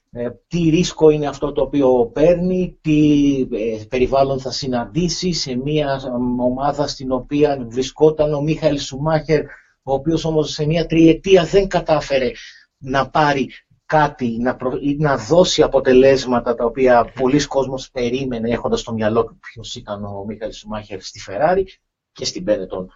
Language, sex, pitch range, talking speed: Greek, male, 120-155 Hz, 140 wpm